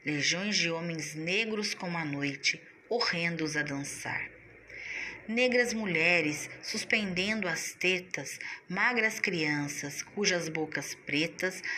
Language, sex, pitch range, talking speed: Portuguese, female, 150-205 Hz, 100 wpm